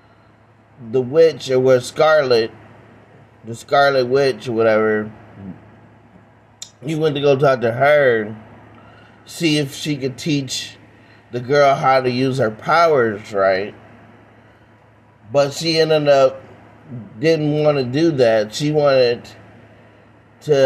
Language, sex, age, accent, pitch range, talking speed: English, male, 30-49, American, 110-135 Hz, 120 wpm